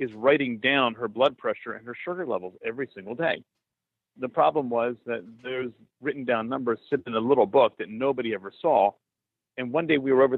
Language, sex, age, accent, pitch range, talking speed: English, male, 50-69, American, 115-150 Hz, 210 wpm